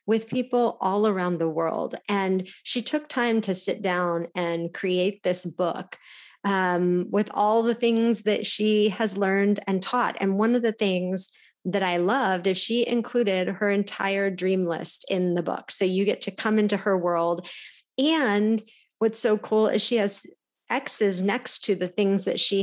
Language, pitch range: English, 180-225 Hz